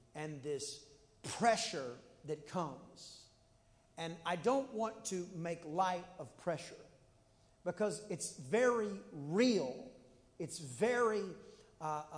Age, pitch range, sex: 40-59, 175-255 Hz, male